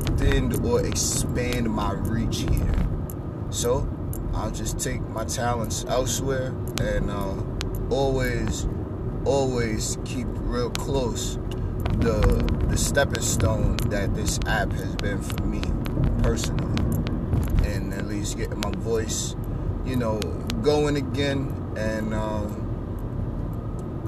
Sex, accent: male, American